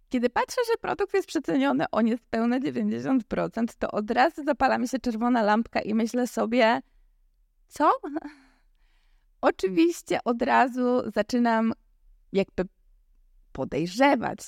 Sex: female